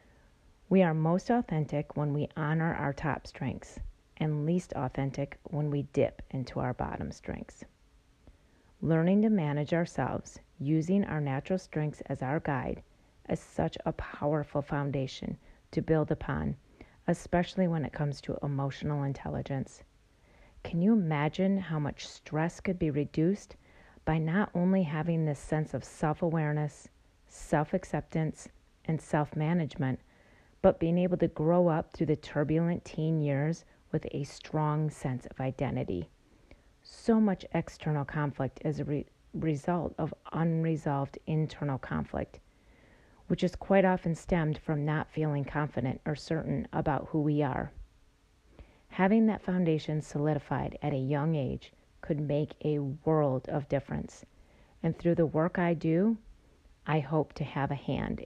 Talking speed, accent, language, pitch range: 140 wpm, American, English, 145-165 Hz